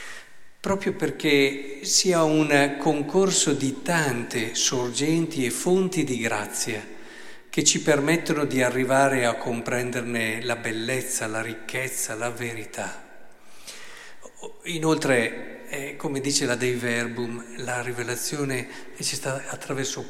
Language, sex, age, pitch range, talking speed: Italian, male, 50-69, 125-160 Hz, 105 wpm